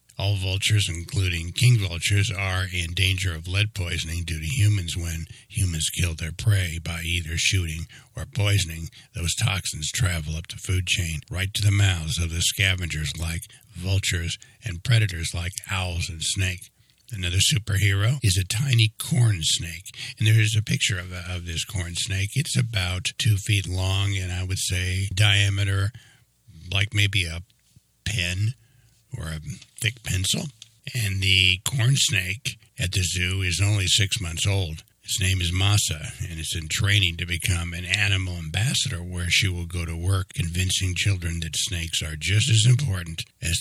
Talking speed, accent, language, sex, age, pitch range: 165 wpm, American, English, male, 60-79, 85-110 Hz